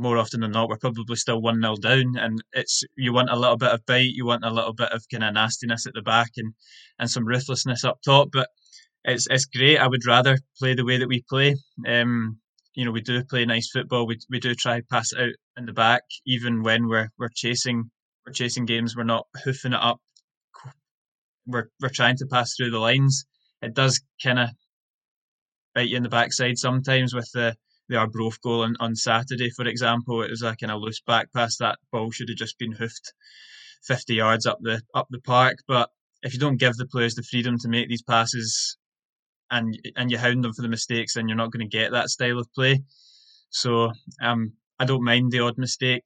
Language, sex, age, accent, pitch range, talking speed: English, male, 10-29, British, 115-130 Hz, 225 wpm